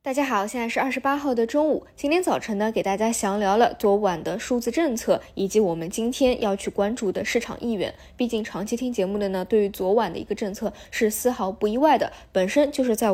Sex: female